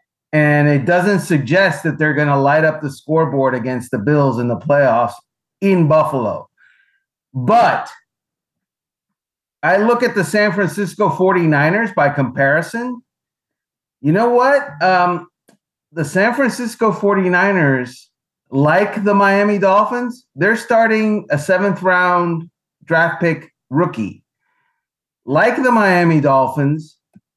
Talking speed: 115 wpm